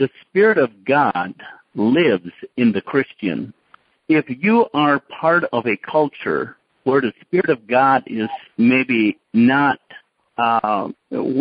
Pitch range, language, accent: 110-145 Hz, English, American